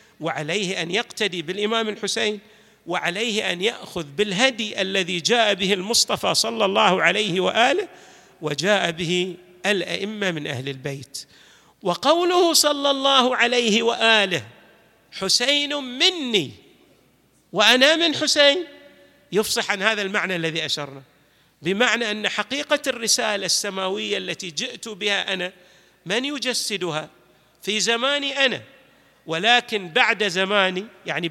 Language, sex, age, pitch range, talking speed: Arabic, male, 50-69, 155-225 Hz, 110 wpm